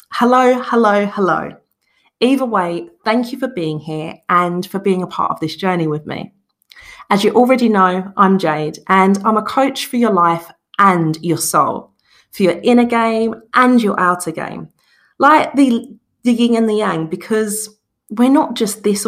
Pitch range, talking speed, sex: 170-230 Hz, 175 wpm, female